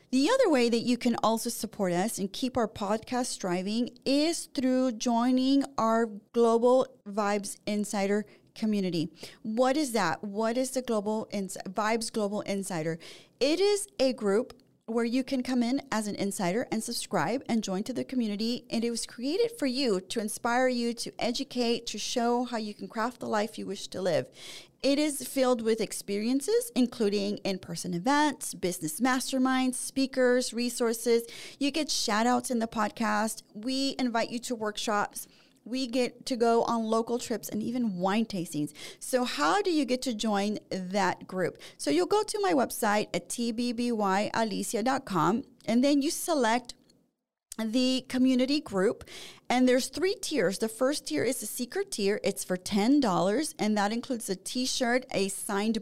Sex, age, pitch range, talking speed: female, 40-59, 205-255 Hz, 165 wpm